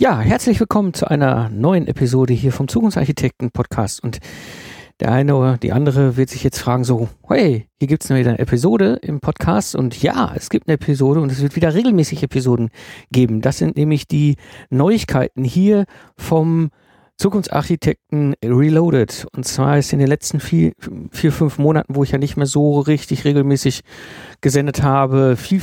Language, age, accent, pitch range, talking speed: German, 50-69, German, 125-155 Hz, 170 wpm